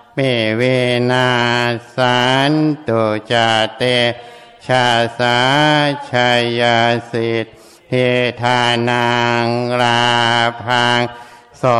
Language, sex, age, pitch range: Thai, male, 60-79, 120-125 Hz